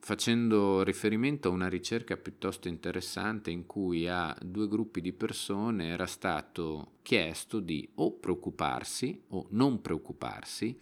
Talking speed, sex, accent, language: 130 wpm, male, native, Italian